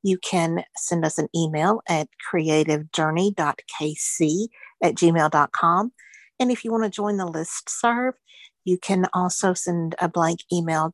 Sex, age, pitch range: female, 50-69, 160-200 Hz